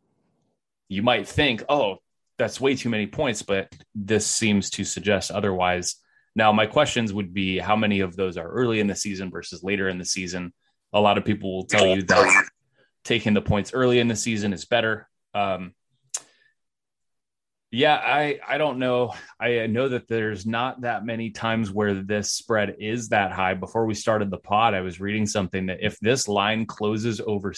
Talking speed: 185 wpm